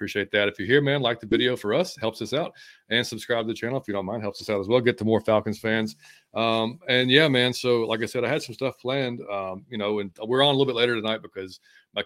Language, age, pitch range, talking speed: English, 40-59, 100-125 Hz, 295 wpm